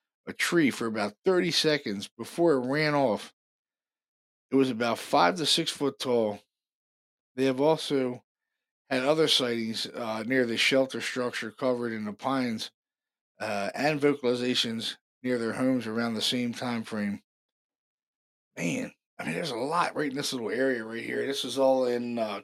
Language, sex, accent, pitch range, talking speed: English, male, American, 120-140 Hz, 165 wpm